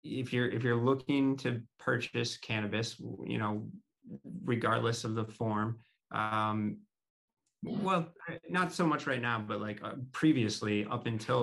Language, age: English, 30-49